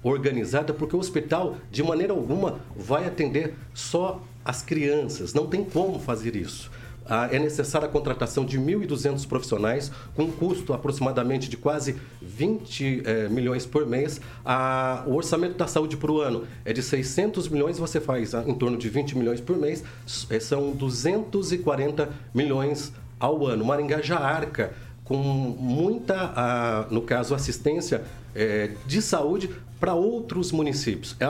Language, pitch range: Portuguese, 125-170 Hz